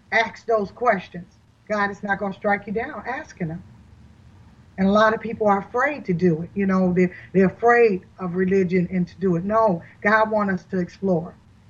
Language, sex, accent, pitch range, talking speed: English, female, American, 170-200 Hz, 205 wpm